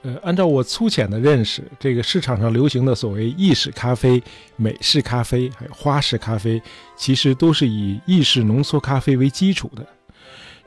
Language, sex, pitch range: Chinese, male, 115-155 Hz